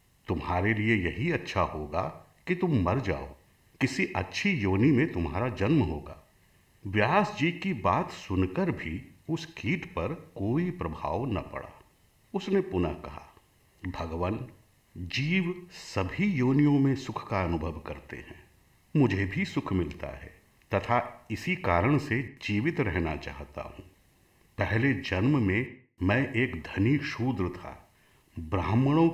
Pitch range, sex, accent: 90-125 Hz, male, native